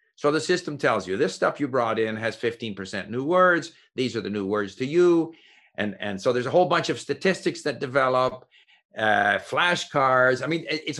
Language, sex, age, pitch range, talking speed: English, male, 50-69, 110-175 Hz, 205 wpm